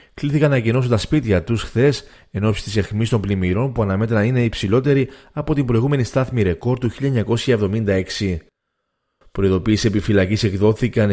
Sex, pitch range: male, 100-125 Hz